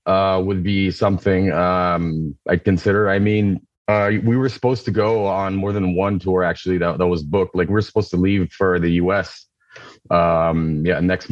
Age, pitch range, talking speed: 30-49, 90-105 Hz, 190 wpm